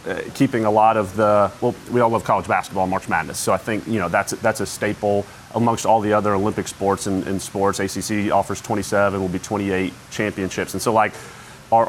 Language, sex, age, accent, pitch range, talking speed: English, male, 30-49, American, 95-115 Hz, 215 wpm